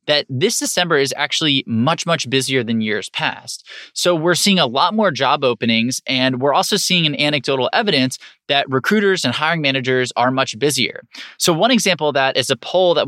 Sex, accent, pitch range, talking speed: male, American, 125-170 Hz, 195 wpm